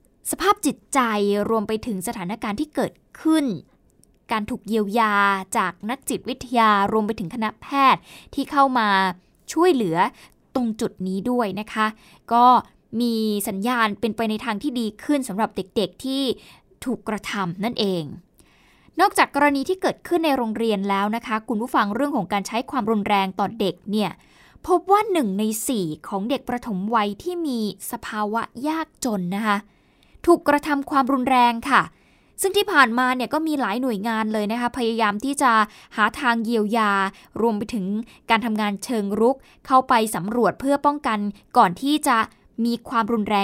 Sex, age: female, 10-29